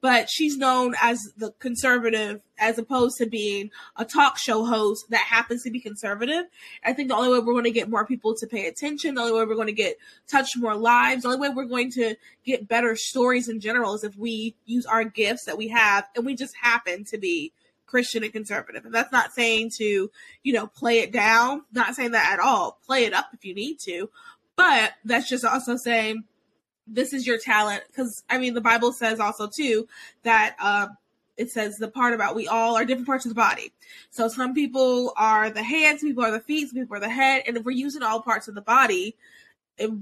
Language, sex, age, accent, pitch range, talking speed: English, female, 20-39, American, 220-260 Hz, 225 wpm